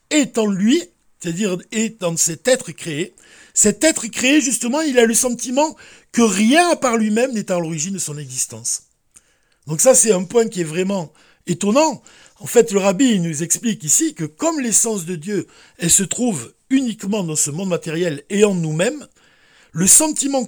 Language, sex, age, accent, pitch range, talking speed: French, male, 60-79, French, 170-240 Hz, 175 wpm